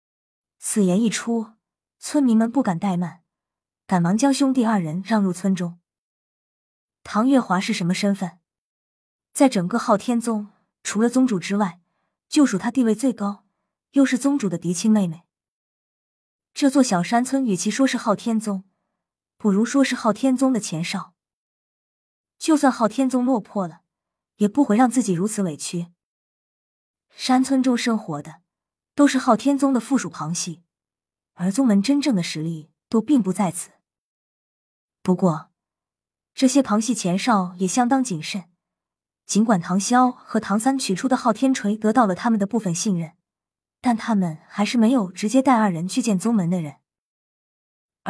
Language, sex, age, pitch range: Chinese, female, 20-39, 185-250 Hz